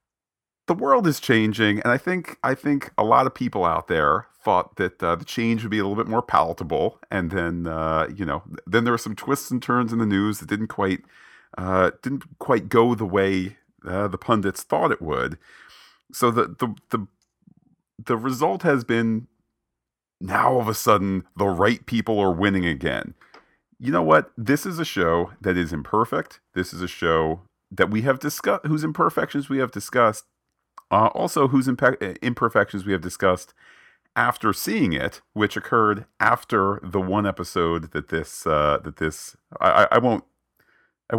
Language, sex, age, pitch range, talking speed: English, male, 40-59, 85-120 Hz, 180 wpm